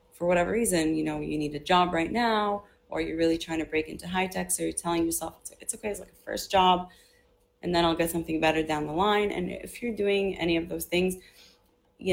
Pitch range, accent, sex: 150-190 Hz, American, female